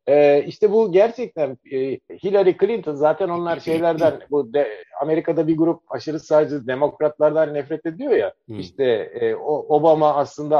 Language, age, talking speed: Turkish, 50-69, 140 wpm